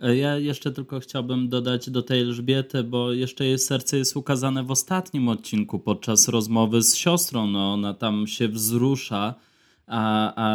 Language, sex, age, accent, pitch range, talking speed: Polish, male, 20-39, native, 110-125 Hz, 160 wpm